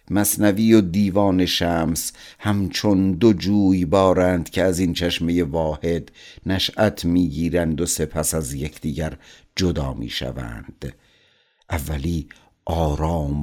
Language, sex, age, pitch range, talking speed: Persian, male, 60-79, 80-95 Hz, 105 wpm